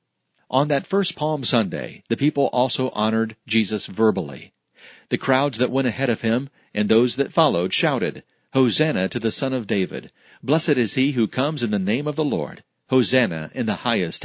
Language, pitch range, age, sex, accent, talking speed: English, 110-135 Hz, 40-59, male, American, 185 wpm